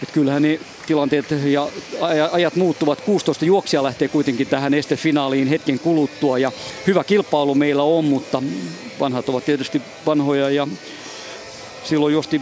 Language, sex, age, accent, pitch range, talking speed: Finnish, male, 40-59, native, 135-155 Hz, 135 wpm